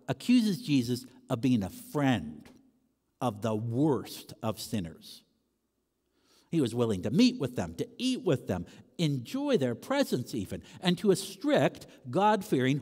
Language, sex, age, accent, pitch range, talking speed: English, male, 60-79, American, 140-230 Hz, 145 wpm